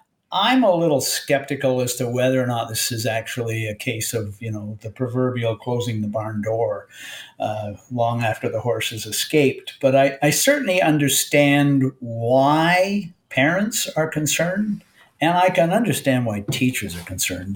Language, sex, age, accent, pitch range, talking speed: English, male, 50-69, American, 115-145 Hz, 160 wpm